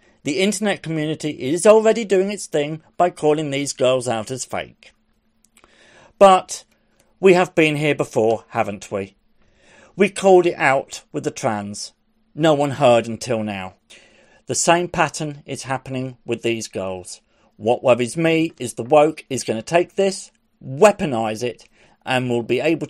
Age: 40-59